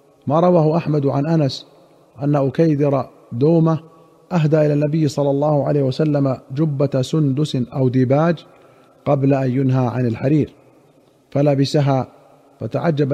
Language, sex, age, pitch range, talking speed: Arabic, male, 50-69, 130-150 Hz, 120 wpm